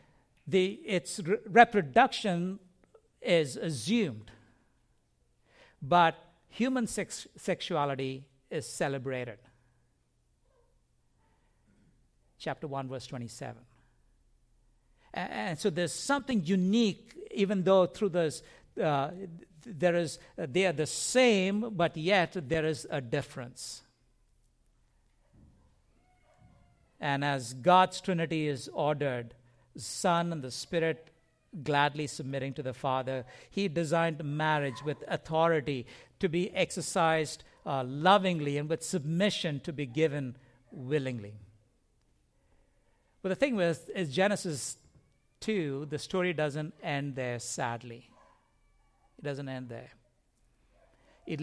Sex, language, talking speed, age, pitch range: male, English, 100 wpm, 60-79, 130-180 Hz